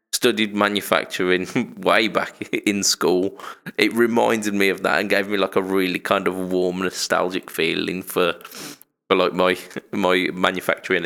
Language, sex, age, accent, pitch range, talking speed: English, male, 20-39, British, 85-100 Hz, 150 wpm